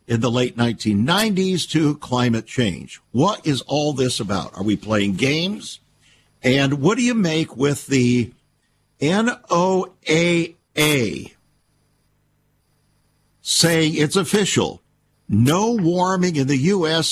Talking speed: 110 wpm